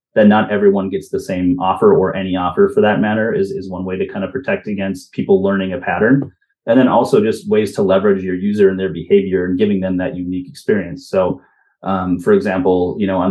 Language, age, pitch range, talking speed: English, 30-49, 95-135 Hz, 230 wpm